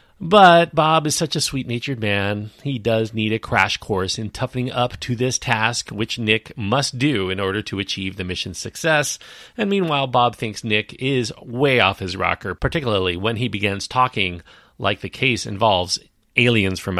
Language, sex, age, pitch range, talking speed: English, male, 40-59, 100-135 Hz, 180 wpm